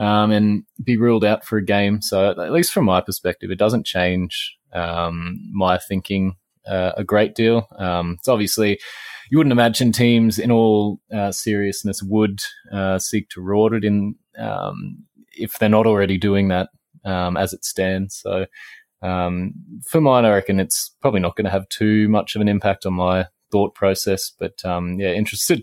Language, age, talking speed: English, 20-39, 185 wpm